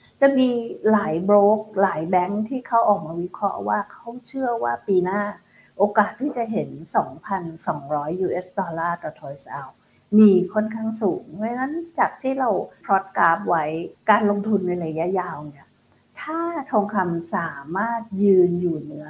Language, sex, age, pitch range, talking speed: English, female, 60-79, 165-210 Hz, 30 wpm